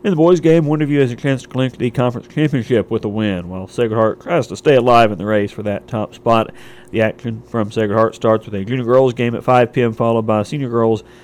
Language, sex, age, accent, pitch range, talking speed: English, male, 40-59, American, 110-125 Hz, 255 wpm